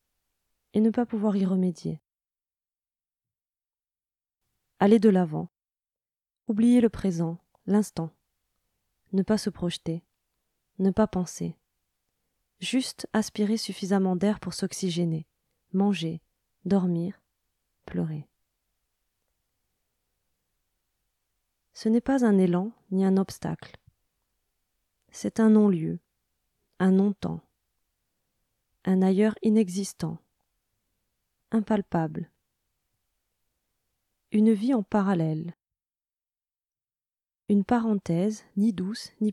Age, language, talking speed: 20-39, French, 85 wpm